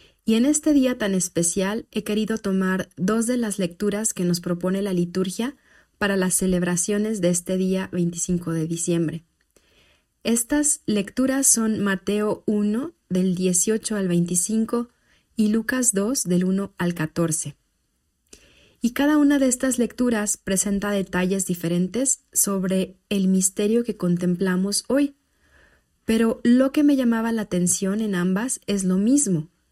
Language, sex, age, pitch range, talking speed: Spanish, female, 30-49, 180-225 Hz, 140 wpm